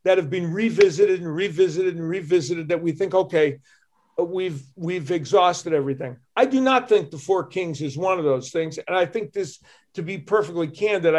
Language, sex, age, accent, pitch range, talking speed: English, male, 50-69, American, 155-195 Hz, 195 wpm